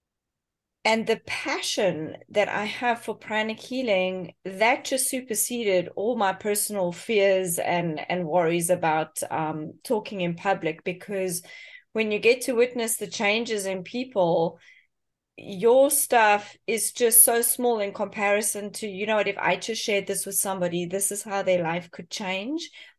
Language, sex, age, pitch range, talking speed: English, female, 30-49, 185-235 Hz, 155 wpm